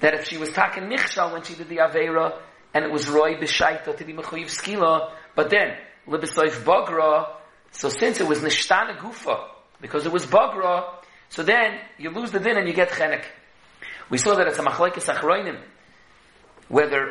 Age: 40-59